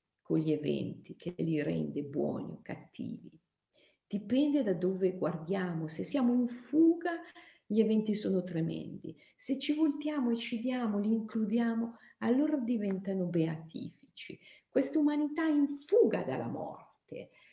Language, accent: Italian, native